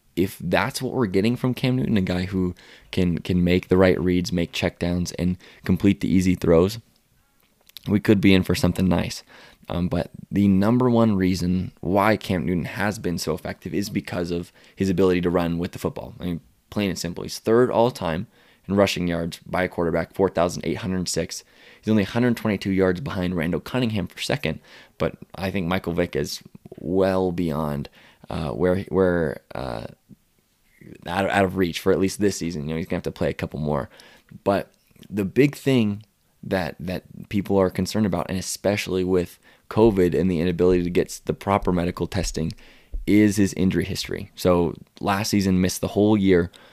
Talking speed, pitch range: 195 wpm, 85-100 Hz